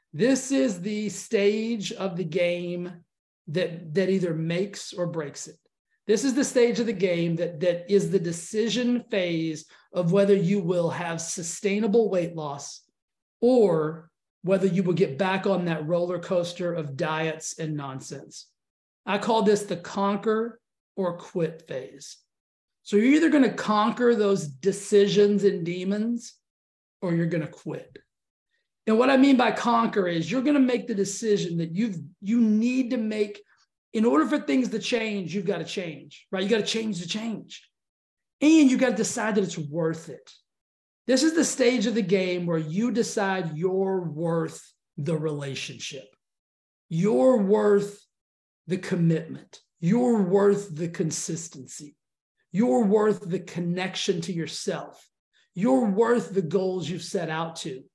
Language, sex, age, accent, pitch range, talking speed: English, male, 40-59, American, 170-225 Hz, 160 wpm